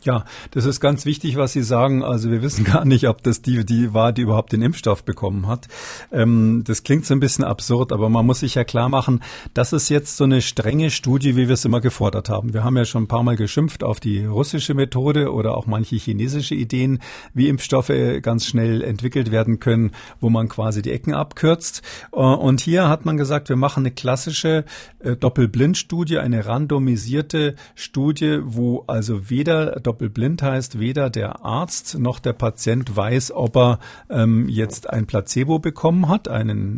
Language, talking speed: German, 185 wpm